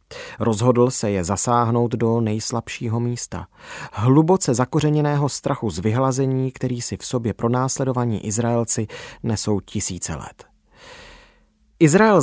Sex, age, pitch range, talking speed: male, 30-49, 110-140 Hz, 115 wpm